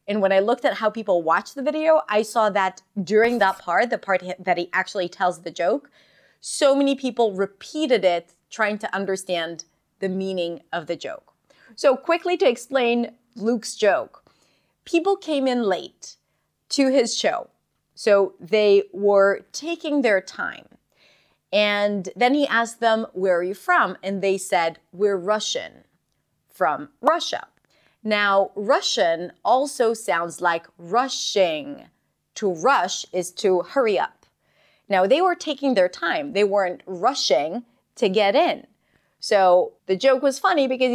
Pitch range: 190-260 Hz